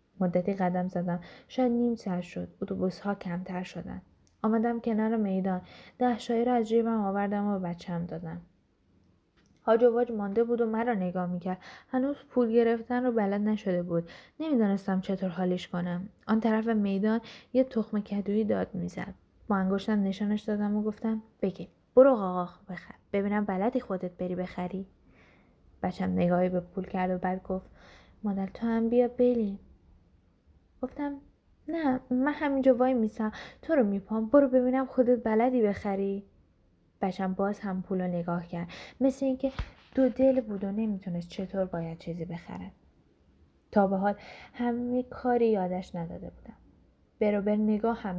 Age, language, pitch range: 10-29, Persian, 180-230 Hz